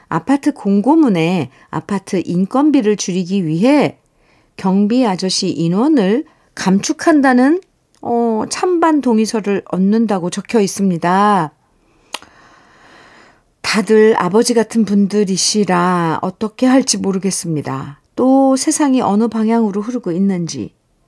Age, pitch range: 50-69, 160-220 Hz